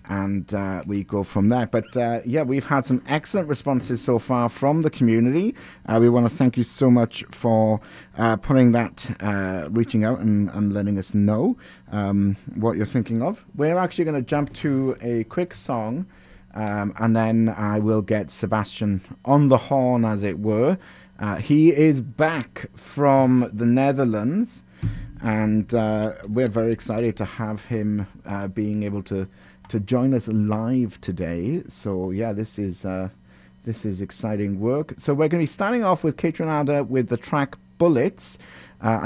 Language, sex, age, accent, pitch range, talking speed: English, male, 30-49, British, 105-135 Hz, 175 wpm